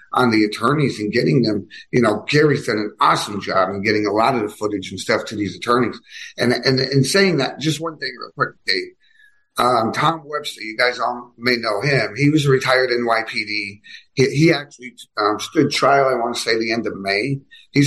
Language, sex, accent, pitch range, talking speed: English, male, American, 115-155 Hz, 220 wpm